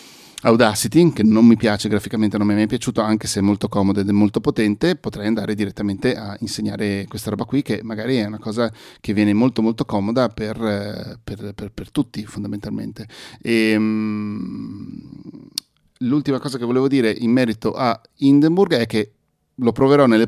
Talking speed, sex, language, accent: 170 wpm, male, Italian, native